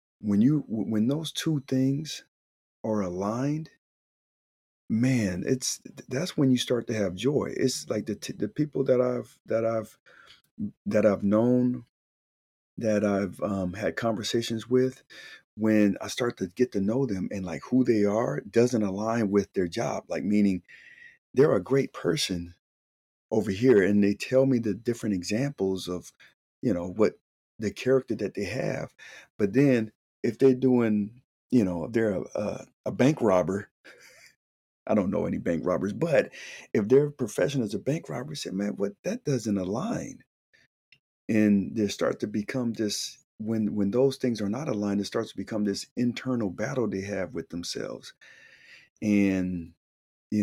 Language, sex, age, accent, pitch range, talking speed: English, male, 40-59, American, 100-125 Hz, 165 wpm